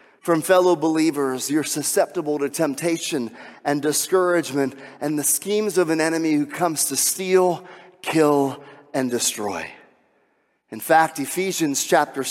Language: English